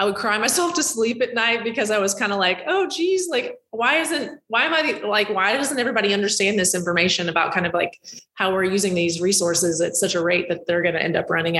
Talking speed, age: 255 wpm, 20-39